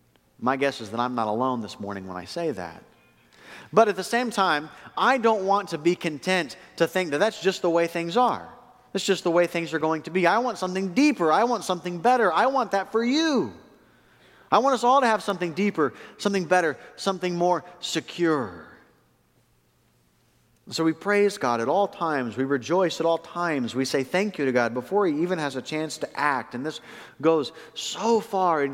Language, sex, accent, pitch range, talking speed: English, male, American, 125-180 Hz, 210 wpm